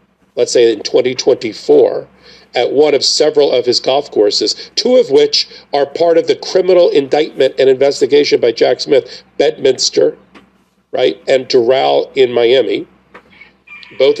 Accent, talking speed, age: American, 140 wpm, 40-59